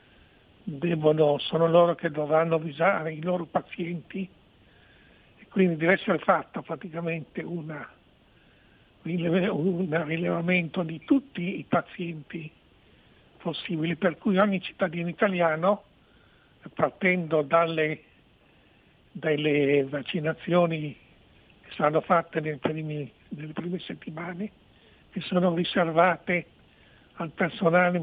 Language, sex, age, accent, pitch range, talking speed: Italian, male, 60-79, native, 155-185 Hz, 90 wpm